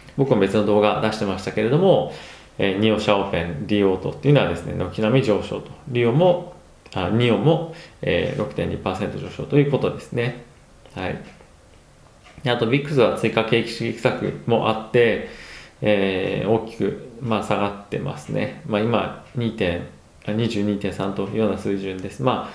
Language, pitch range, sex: Japanese, 100-120 Hz, male